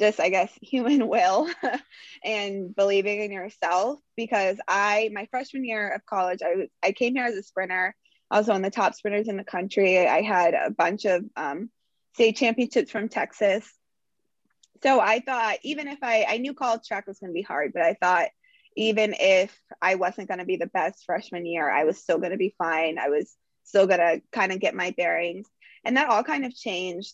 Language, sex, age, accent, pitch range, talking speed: English, female, 20-39, American, 185-230 Hz, 210 wpm